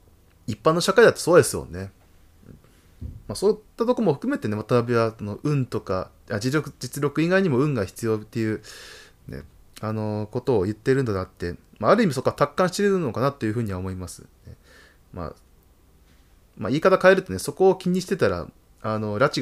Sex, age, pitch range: male, 20-39, 100-155 Hz